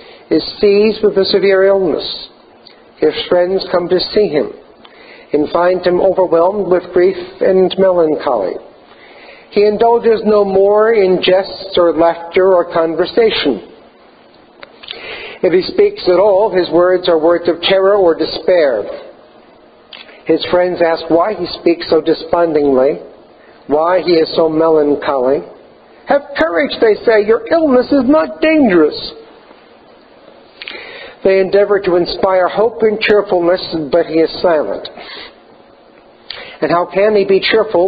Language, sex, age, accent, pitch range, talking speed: English, male, 60-79, American, 165-205 Hz, 130 wpm